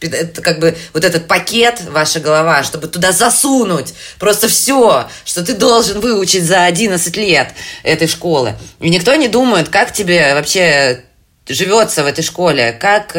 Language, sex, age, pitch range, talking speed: Russian, female, 20-39, 150-180 Hz, 155 wpm